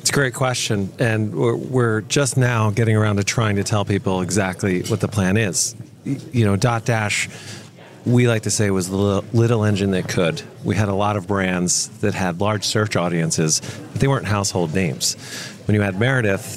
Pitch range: 95-120 Hz